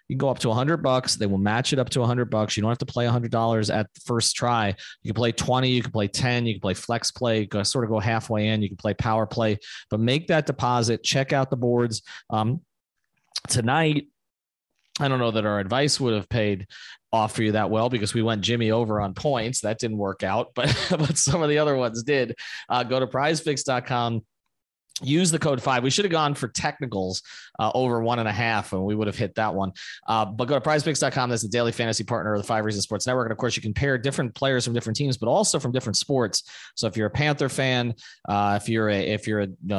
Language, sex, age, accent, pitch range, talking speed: English, male, 30-49, American, 105-130 Hz, 255 wpm